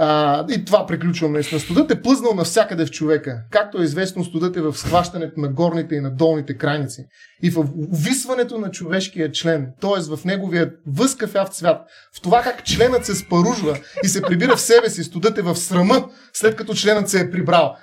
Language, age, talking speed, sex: Bulgarian, 30-49, 190 wpm, male